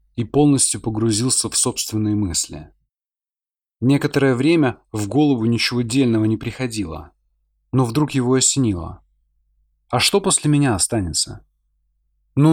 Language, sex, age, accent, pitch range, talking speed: Russian, male, 30-49, native, 80-130 Hz, 115 wpm